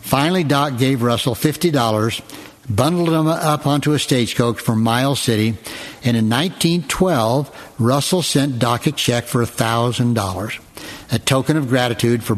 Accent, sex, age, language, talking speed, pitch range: American, male, 60-79, English, 160 wpm, 115-140 Hz